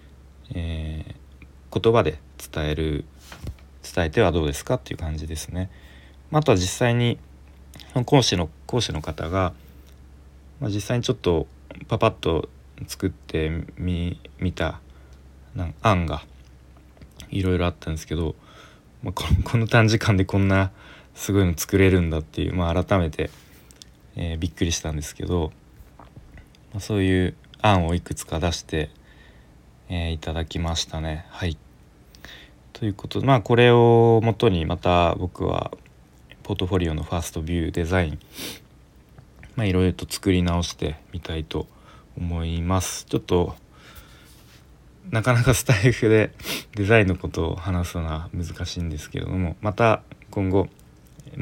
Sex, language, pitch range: male, Japanese, 75-95 Hz